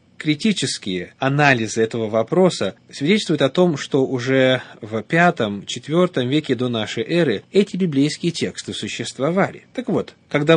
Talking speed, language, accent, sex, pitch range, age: 130 wpm, Russian, native, male, 115-155 Hz, 30-49